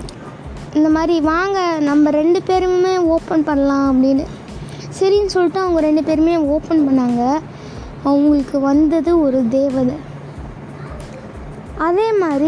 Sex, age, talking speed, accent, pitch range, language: female, 20-39, 100 wpm, native, 285-335 Hz, Tamil